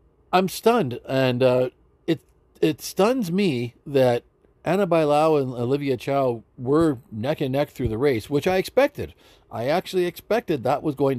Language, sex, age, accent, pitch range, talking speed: English, male, 50-69, American, 120-175 Hz, 160 wpm